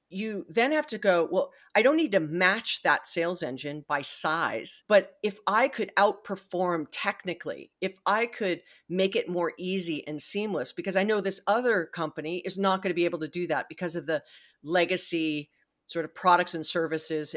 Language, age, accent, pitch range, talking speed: English, 40-59, American, 155-205 Hz, 190 wpm